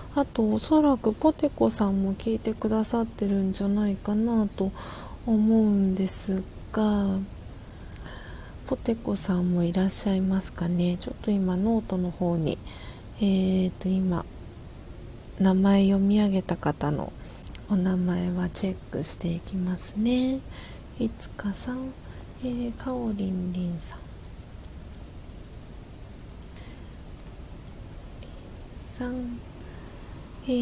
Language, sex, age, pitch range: Japanese, female, 40-59, 180-230 Hz